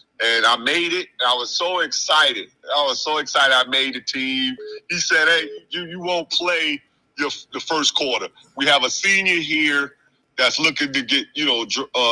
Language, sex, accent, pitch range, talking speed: English, male, American, 125-185 Hz, 200 wpm